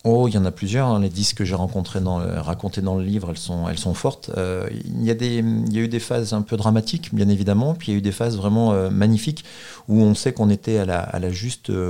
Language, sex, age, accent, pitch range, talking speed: French, male, 40-59, French, 95-115 Hz, 275 wpm